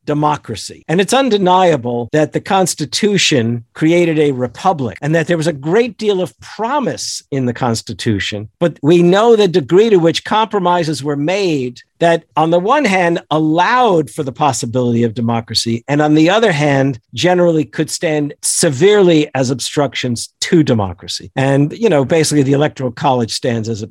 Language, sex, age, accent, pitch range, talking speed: English, male, 50-69, American, 125-175 Hz, 165 wpm